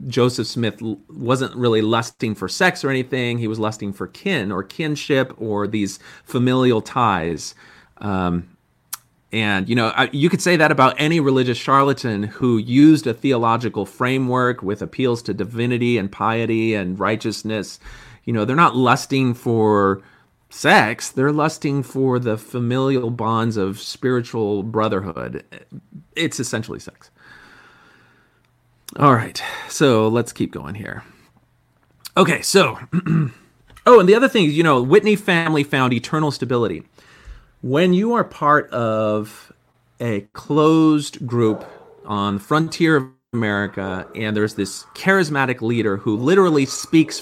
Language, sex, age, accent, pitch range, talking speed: English, male, 40-59, American, 110-145 Hz, 135 wpm